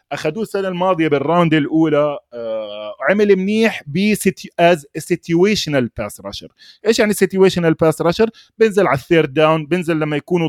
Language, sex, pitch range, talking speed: Arabic, male, 140-200 Hz, 130 wpm